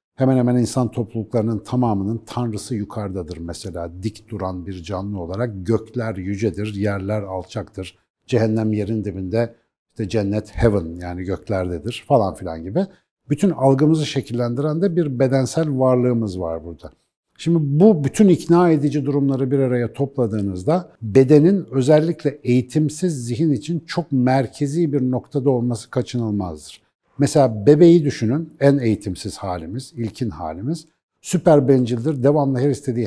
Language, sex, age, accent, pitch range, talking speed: Turkish, male, 60-79, native, 105-140 Hz, 125 wpm